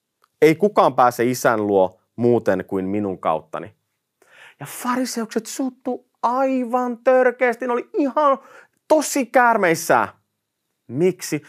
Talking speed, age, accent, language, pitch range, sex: 105 wpm, 30-49, native, Finnish, 120-200 Hz, male